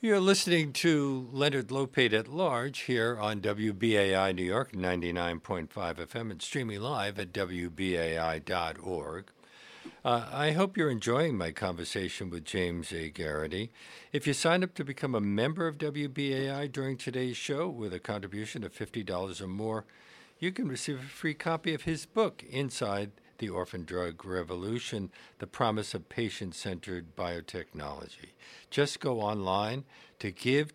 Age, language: 60-79, English